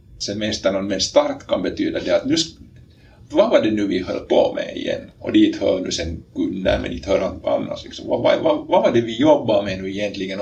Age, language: 50-69, Swedish